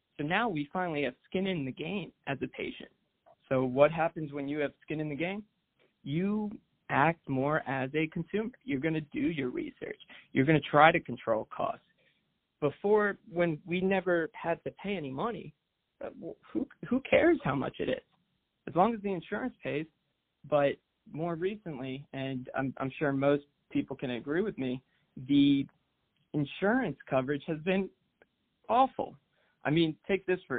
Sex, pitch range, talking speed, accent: male, 140-185 Hz, 170 wpm, American